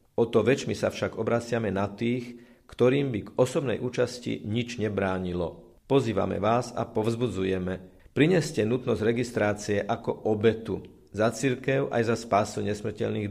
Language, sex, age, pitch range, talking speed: Slovak, male, 50-69, 100-120 Hz, 130 wpm